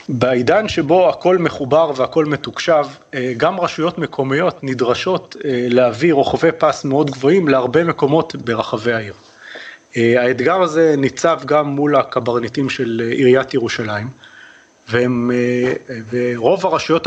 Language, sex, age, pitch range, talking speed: Hebrew, male, 30-49, 130-165 Hz, 110 wpm